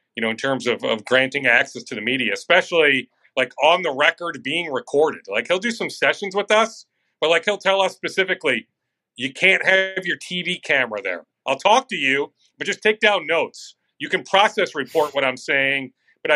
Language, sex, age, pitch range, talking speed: English, male, 40-59, 140-210 Hz, 200 wpm